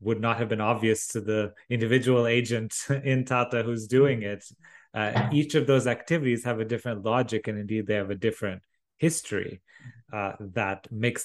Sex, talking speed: male, 175 wpm